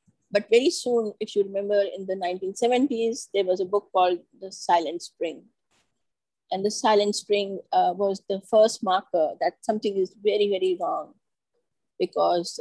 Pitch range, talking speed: 195-250 Hz, 155 wpm